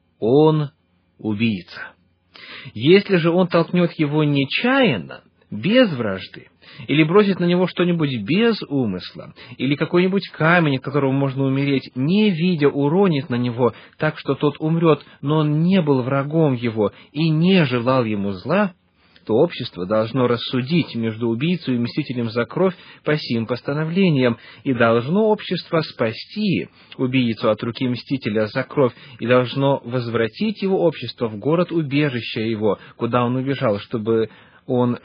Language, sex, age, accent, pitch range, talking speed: Russian, male, 30-49, native, 120-165 Hz, 135 wpm